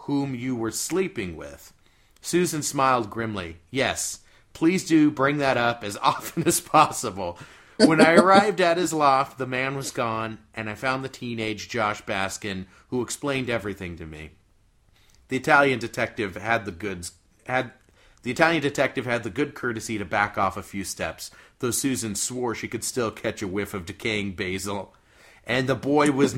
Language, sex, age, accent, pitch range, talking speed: English, male, 30-49, American, 100-135 Hz, 175 wpm